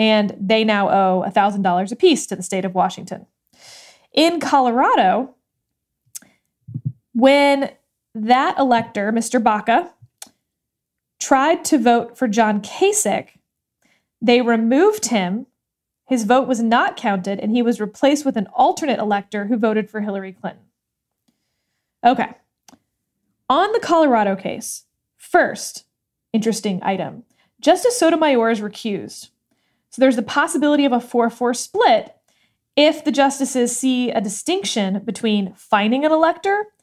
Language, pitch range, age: English, 215-275 Hz, 20-39